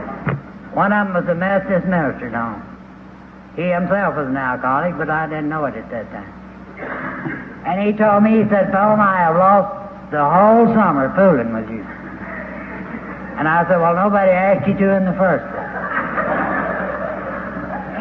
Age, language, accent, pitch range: 60-79, English, American, 150-195 Hz